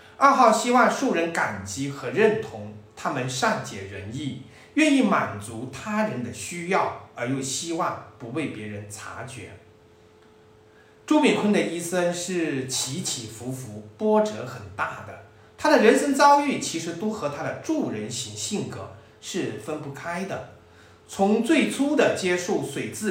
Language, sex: Chinese, male